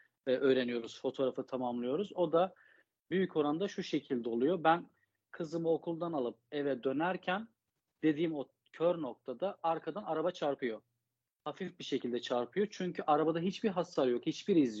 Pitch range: 130-180 Hz